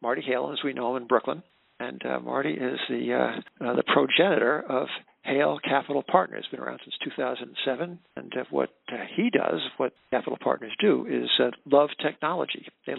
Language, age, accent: English, 50-69, American